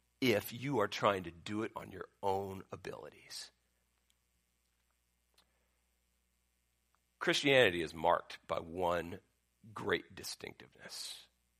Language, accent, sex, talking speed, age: English, American, male, 95 wpm, 50-69